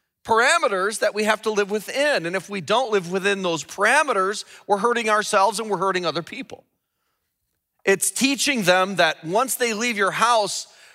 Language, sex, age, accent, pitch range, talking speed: English, male, 40-59, American, 175-230 Hz, 175 wpm